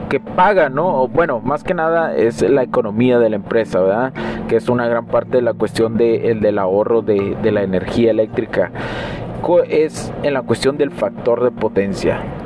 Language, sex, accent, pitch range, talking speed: Spanish, male, Mexican, 115-145 Hz, 190 wpm